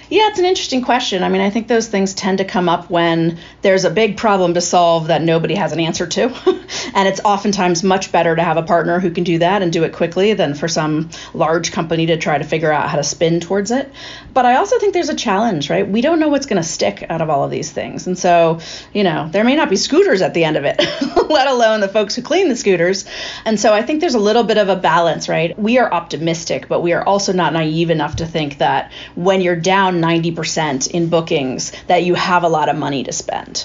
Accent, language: American, English